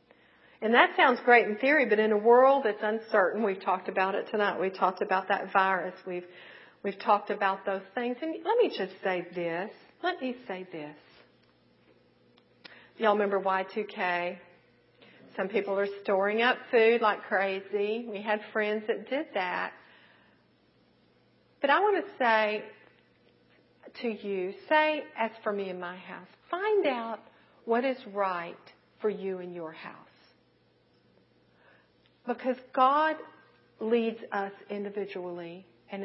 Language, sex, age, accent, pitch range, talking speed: English, female, 50-69, American, 190-280 Hz, 140 wpm